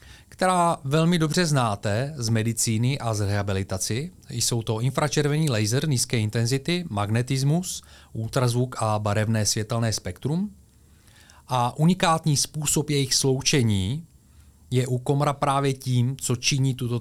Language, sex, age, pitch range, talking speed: Czech, male, 30-49, 110-135 Hz, 120 wpm